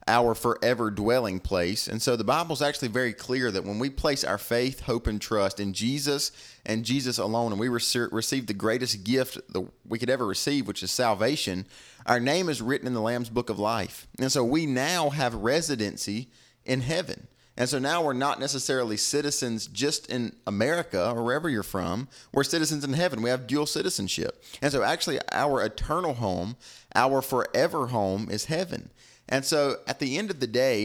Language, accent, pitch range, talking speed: English, American, 115-140 Hz, 190 wpm